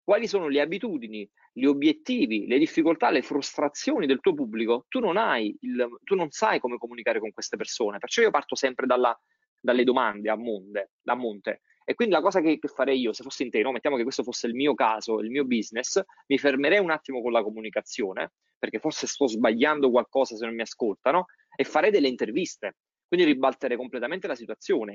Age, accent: 20-39, native